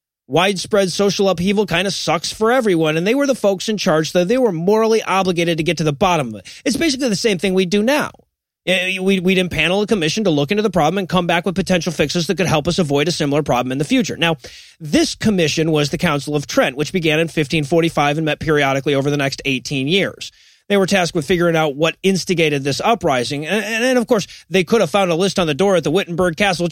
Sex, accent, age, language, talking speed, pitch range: male, American, 30-49, English, 245 wpm, 160-215 Hz